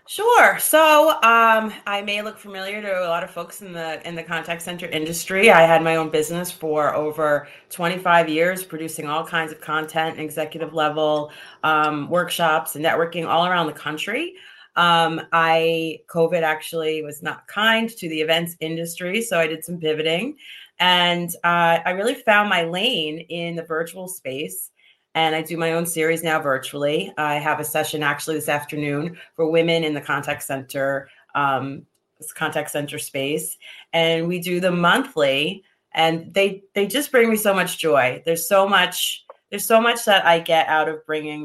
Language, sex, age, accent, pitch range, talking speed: English, female, 30-49, American, 150-180 Hz, 175 wpm